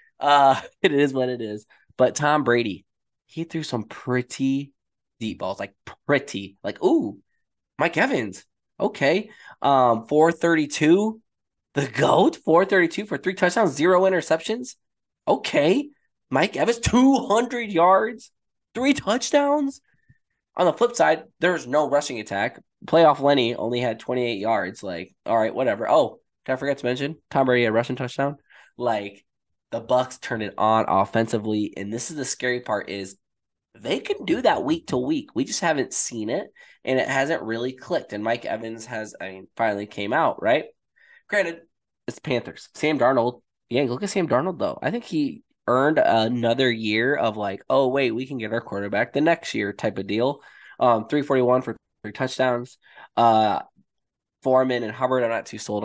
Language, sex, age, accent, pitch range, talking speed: English, male, 10-29, American, 115-170 Hz, 175 wpm